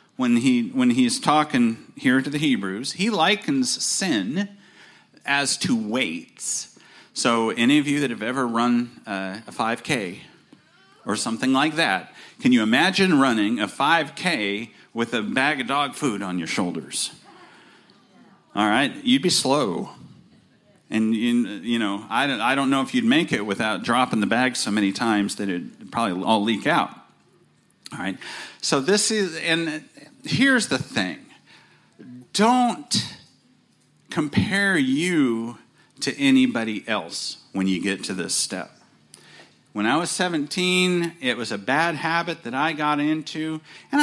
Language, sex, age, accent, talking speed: English, male, 40-59, American, 155 wpm